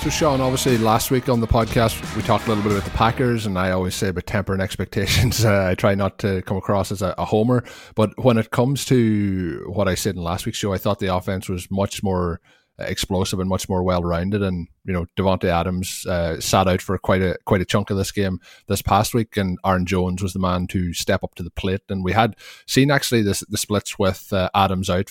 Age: 30-49